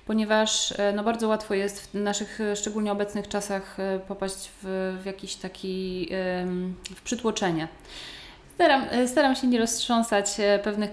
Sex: female